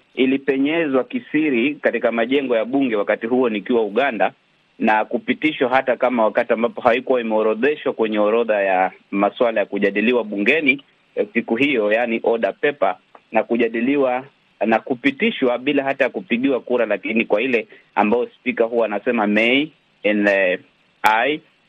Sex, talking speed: male, 135 wpm